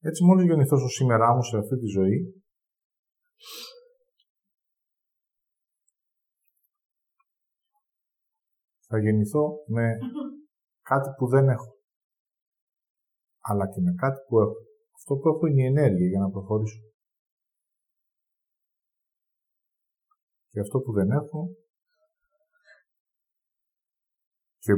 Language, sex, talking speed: Greek, male, 90 wpm